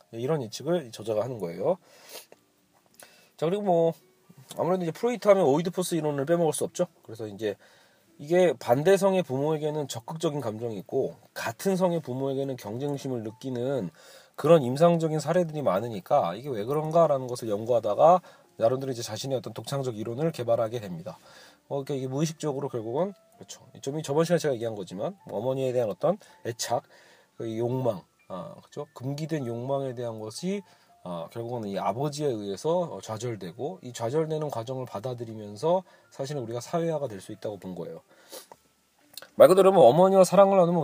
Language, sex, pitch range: Korean, male, 120-165 Hz